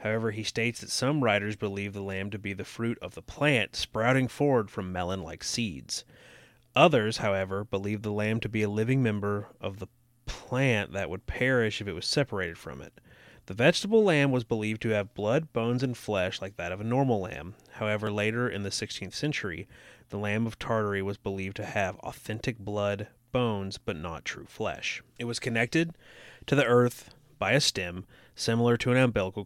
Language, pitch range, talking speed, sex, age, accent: English, 100-120 Hz, 190 wpm, male, 30-49, American